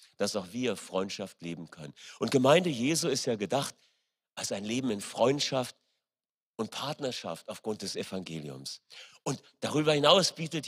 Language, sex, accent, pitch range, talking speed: German, male, German, 110-145 Hz, 145 wpm